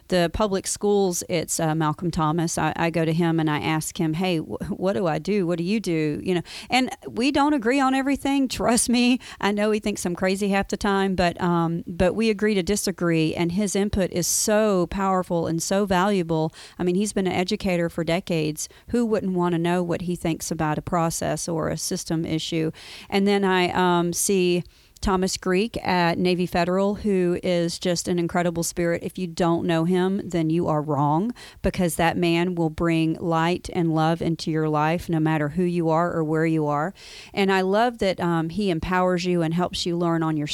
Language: English